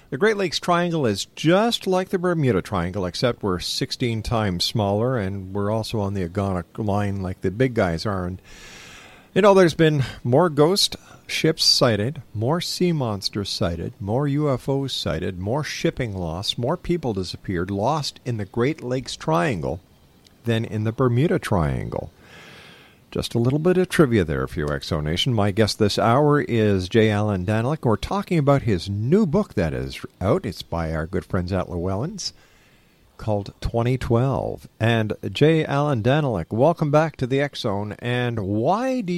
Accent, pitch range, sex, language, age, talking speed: American, 100-145 Hz, male, English, 50-69, 165 wpm